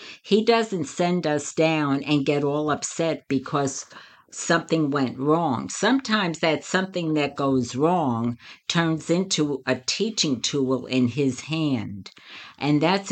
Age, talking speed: 60-79, 135 wpm